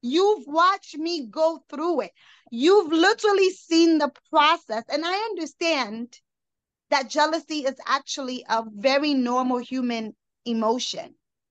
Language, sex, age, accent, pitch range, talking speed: English, female, 20-39, American, 255-335 Hz, 120 wpm